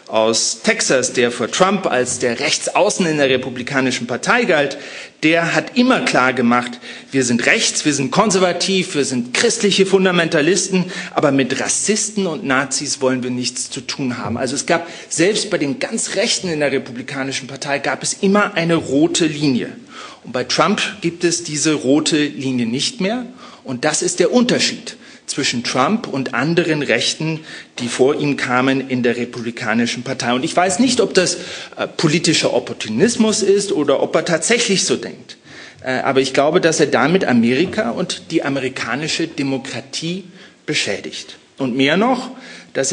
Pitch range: 130-190 Hz